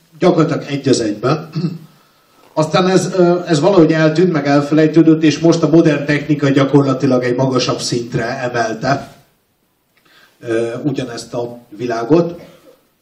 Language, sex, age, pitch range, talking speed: Hungarian, male, 50-69, 125-160 Hz, 110 wpm